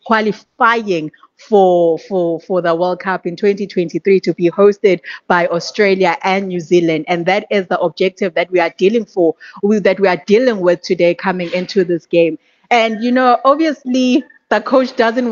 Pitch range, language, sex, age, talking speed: 180-215 Hz, English, female, 30-49, 175 wpm